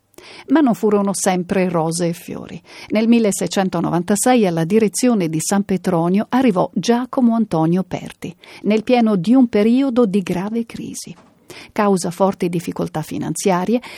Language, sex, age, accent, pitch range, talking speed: Italian, female, 50-69, native, 185-245 Hz, 130 wpm